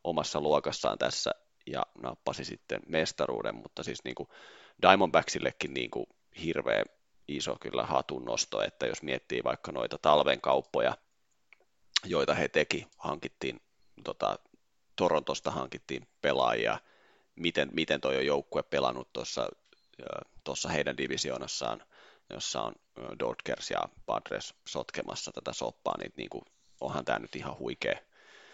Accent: native